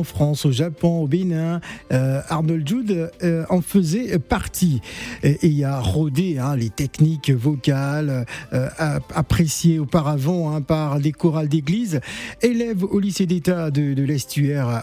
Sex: male